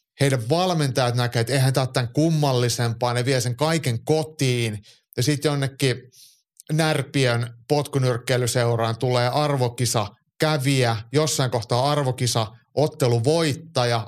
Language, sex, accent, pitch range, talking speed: Finnish, male, native, 115-145 Hz, 105 wpm